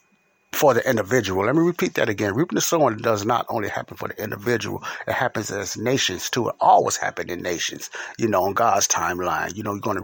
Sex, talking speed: male, 225 wpm